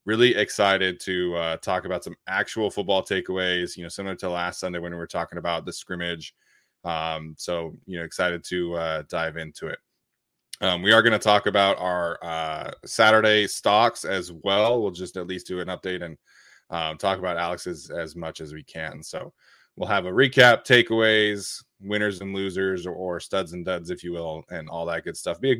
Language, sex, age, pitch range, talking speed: English, male, 20-39, 90-115 Hz, 205 wpm